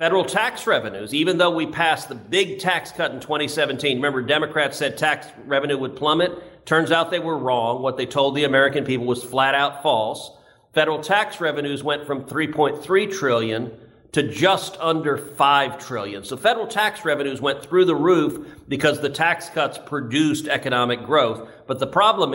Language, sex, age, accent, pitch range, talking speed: English, male, 50-69, American, 135-170 Hz, 175 wpm